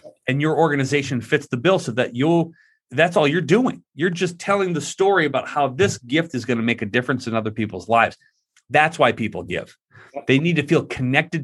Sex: male